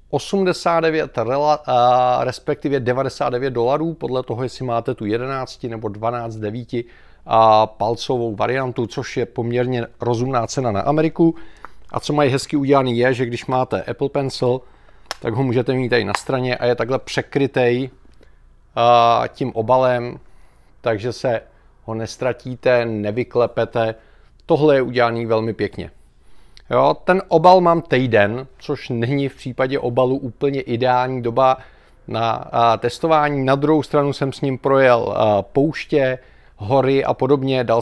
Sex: male